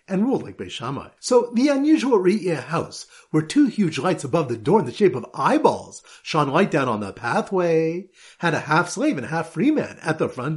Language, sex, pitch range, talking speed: English, male, 150-220 Hz, 205 wpm